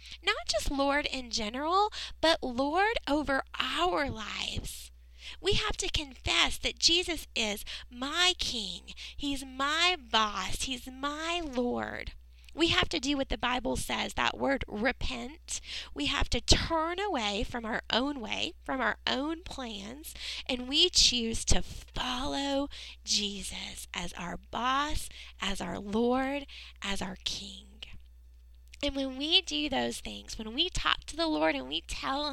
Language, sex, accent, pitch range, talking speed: English, female, American, 215-315 Hz, 145 wpm